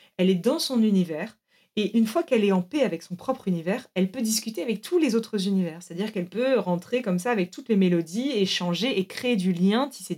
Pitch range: 185-250 Hz